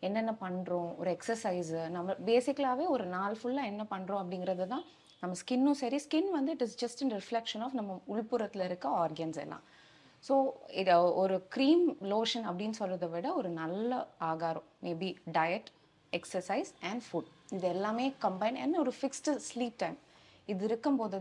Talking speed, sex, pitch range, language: 155 wpm, female, 175-250 Hz, Tamil